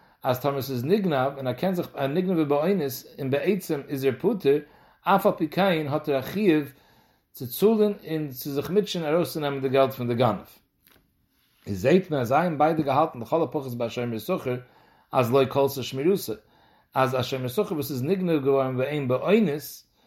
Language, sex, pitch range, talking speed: English, male, 130-175 Hz, 165 wpm